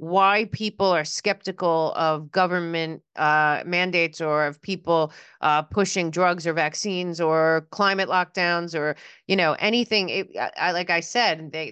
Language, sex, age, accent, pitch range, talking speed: English, female, 30-49, American, 150-175 Hz, 155 wpm